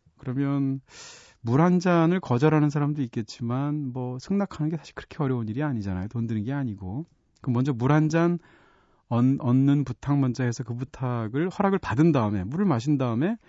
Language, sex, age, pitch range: Korean, male, 40-59, 115-155 Hz